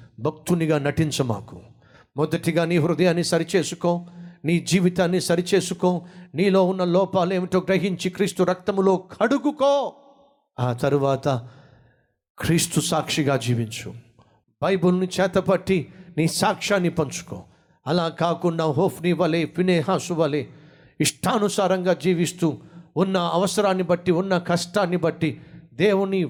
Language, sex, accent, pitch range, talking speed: Telugu, male, native, 130-180 Hz, 95 wpm